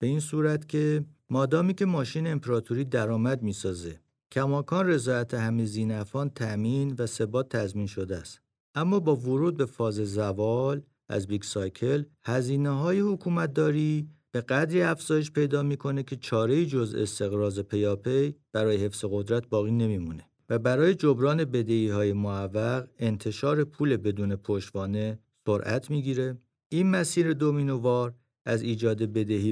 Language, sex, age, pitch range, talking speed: Persian, male, 50-69, 105-140 Hz, 135 wpm